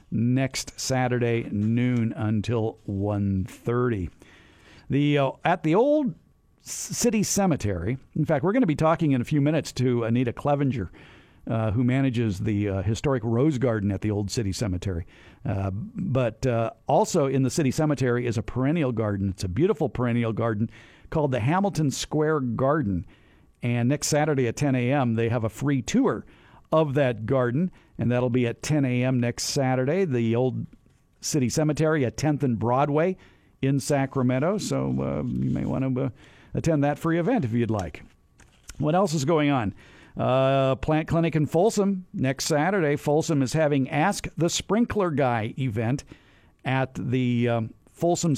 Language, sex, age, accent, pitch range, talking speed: English, male, 50-69, American, 115-155 Hz, 165 wpm